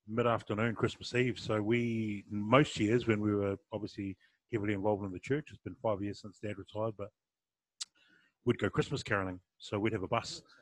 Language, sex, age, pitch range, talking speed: English, male, 30-49, 100-115 Hz, 185 wpm